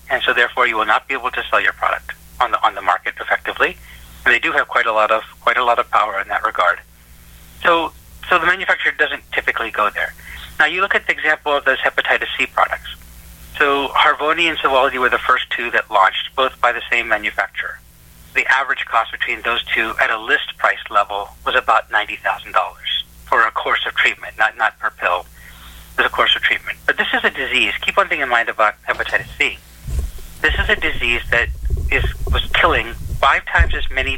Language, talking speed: English, 210 wpm